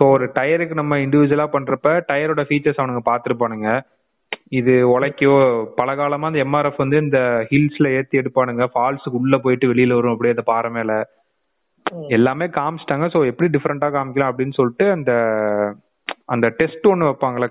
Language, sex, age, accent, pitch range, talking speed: Tamil, male, 30-49, native, 120-155 Hz, 135 wpm